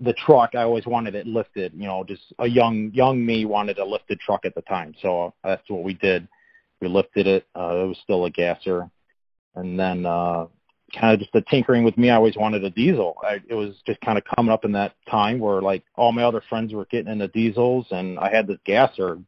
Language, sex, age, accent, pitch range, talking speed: English, male, 30-49, American, 90-110 Hz, 235 wpm